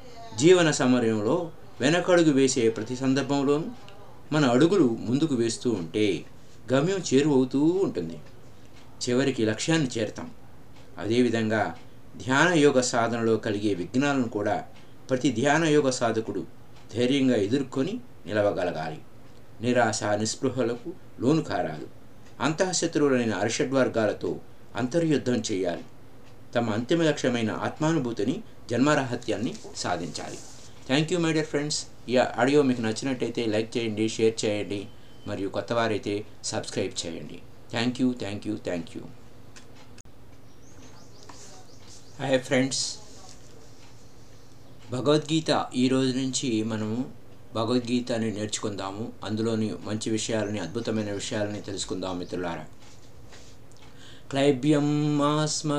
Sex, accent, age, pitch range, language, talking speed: male, native, 50-69, 110-135 Hz, Telugu, 80 wpm